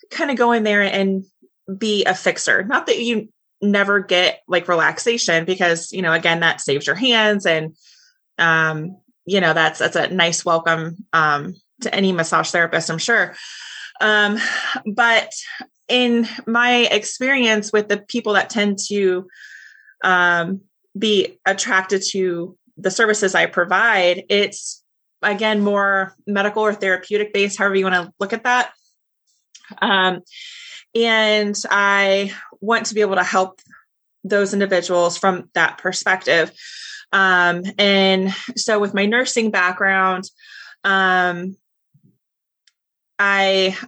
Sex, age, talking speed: female, 20-39, 130 wpm